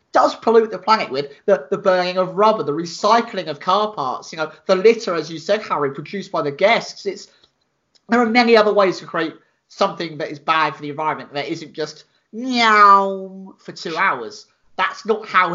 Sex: male